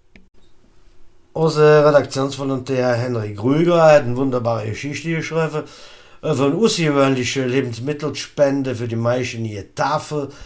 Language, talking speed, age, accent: German, 100 wpm, 50-69, German